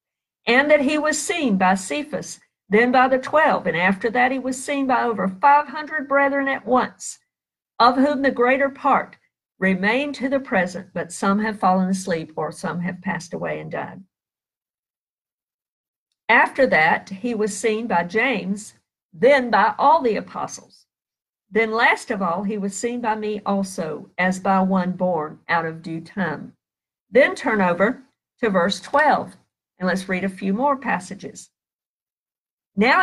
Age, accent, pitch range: 50-69, American, 190-270 Hz